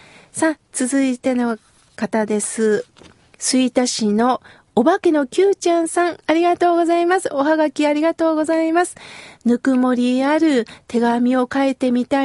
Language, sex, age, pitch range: Japanese, female, 40-59, 250-330 Hz